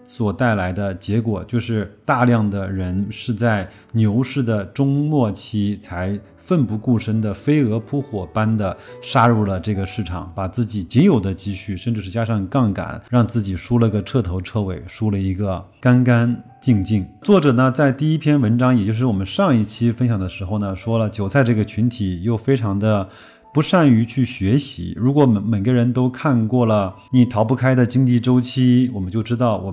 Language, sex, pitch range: Chinese, male, 100-125 Hz